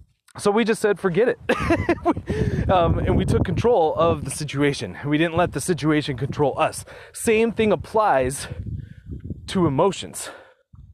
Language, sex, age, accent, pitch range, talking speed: English, male, 30-49, American, 130-175 Hz, 145 wpm